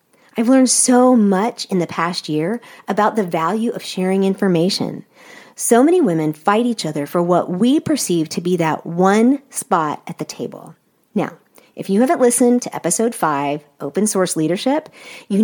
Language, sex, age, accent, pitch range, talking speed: English, female, 40-59, American, 170-240 Hz, 170 wpm